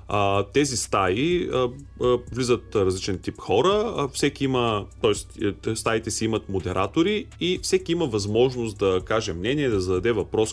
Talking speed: 150 wpm